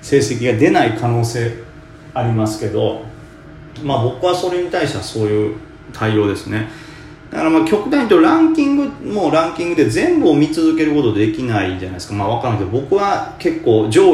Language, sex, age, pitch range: Japanese, male, 30-49, 110-160 Hz